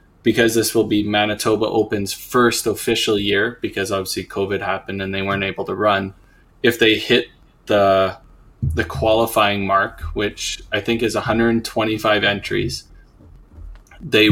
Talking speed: 140 wpm